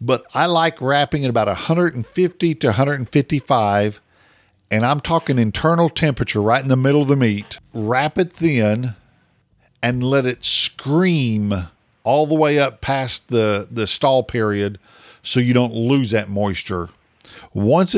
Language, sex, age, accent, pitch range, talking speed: English, male, 50-69, American, 110-150 Hz, 145 wpm